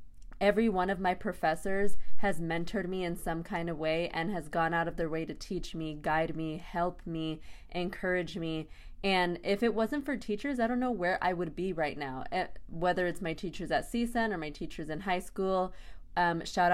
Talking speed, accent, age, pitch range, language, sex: 210 wpm, American, 20-39, 165-205 Hz, English, female